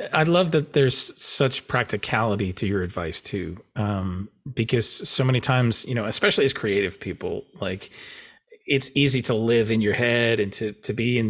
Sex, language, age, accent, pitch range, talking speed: male, English, 30-49, American, 105-125 Hz, 180 wpm